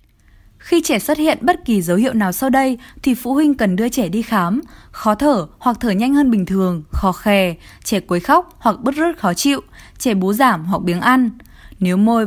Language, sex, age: Vietnamese, female, 20-39